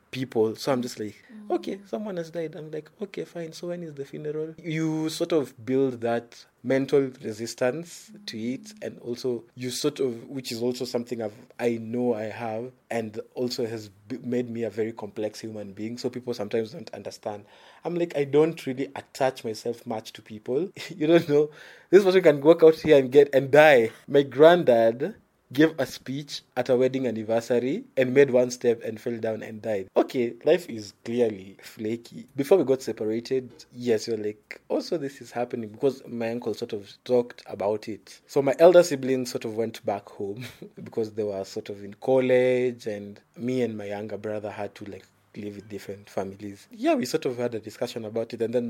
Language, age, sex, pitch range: English, 20-39, male, 110-140 Hz